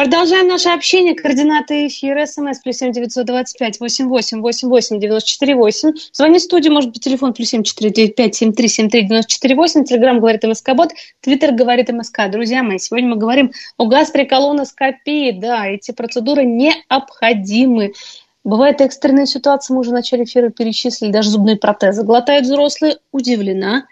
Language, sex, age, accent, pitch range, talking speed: Russian, female, 20-39, native, 230-285 Hz, 145 wpm